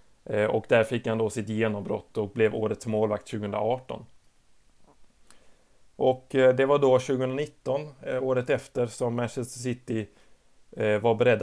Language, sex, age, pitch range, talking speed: Swedish, male, 30-49, 105-120 Hz, 125 wpm